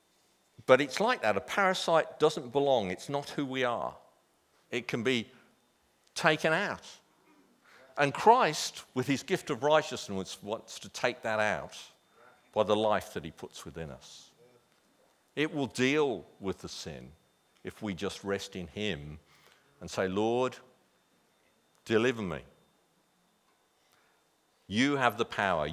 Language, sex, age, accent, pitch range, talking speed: English, male, 50-69, British, 120-155 Hz, 140 wpm